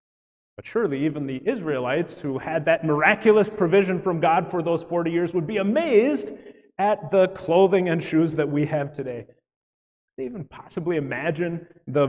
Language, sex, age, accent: English, male, 30-49, American